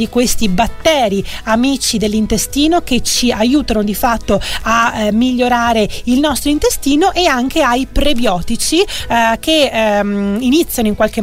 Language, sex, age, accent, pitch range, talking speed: Italian, female, 30-49, native, 220-285 Hz, 135 wpm